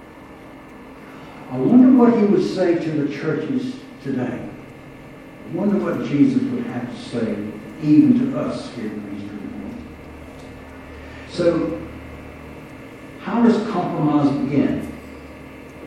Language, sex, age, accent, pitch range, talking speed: English, male, 60-79, American, 105-175 Hz, 115 wpm